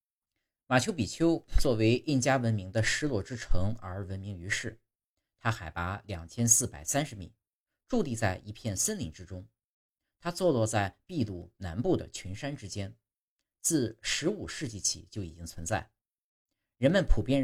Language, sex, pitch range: Chinese, male, 90-115 Hz